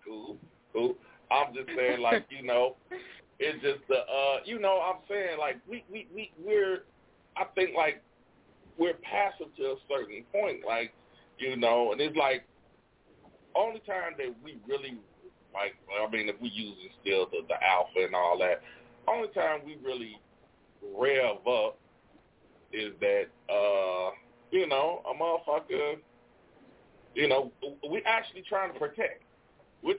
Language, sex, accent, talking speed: English, male, American, 155 wpm